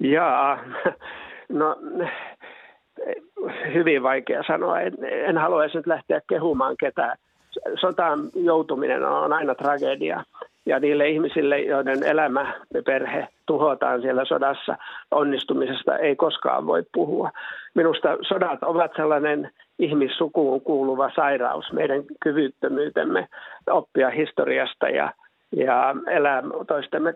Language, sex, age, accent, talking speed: Finnish, male, 60-79, native, 105 wpm